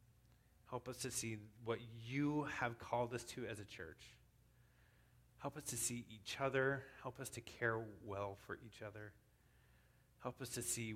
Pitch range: 115-140 Hz